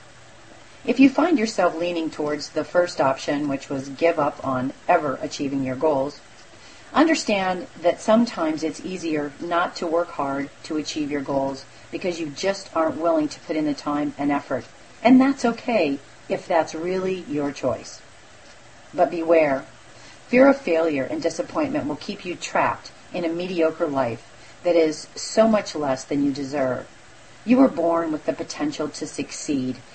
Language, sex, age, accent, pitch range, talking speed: English, female, 40-59, American, 145-195 Hz, 165 wpm